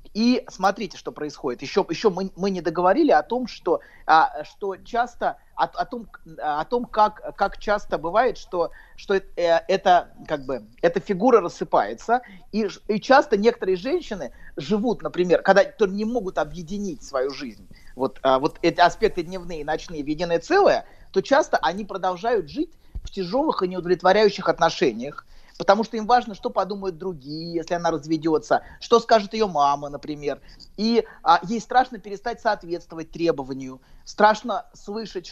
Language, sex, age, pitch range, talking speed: Russian, male, 30-49, 165-220 Hz, 150 wpm